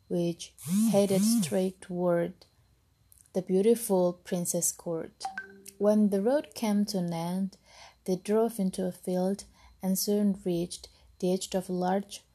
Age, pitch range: 20-39, 180-220 Hz